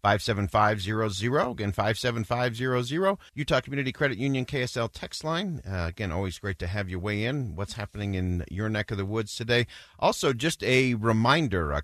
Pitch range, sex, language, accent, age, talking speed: 90-115 Hz, male, English, American, 50-69, 200 wpm